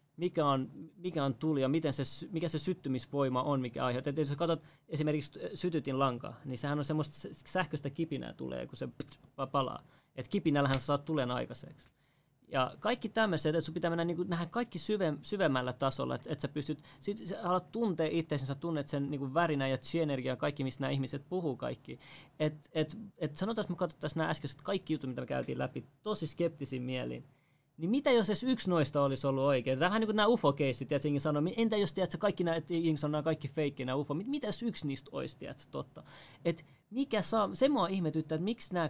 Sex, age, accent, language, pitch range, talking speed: male, 20-39, native, Finnish, 140-170 Hz, 205 wpm